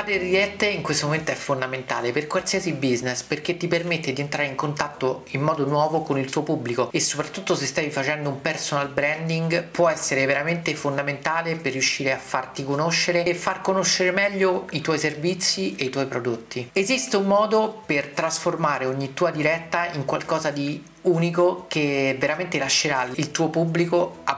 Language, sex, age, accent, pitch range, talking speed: Italian, male, 40-59, native, 140-175 Hz, 175 wpm